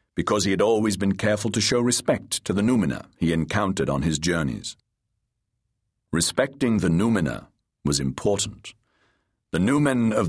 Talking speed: 145 wpm